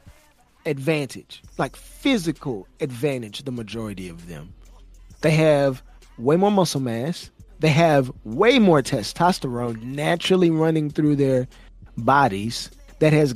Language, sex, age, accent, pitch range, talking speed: English, male, 30-49, American, 135-170 Hz, 115 wpm